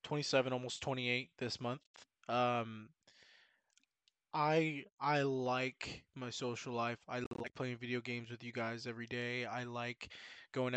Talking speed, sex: 140 wpm, male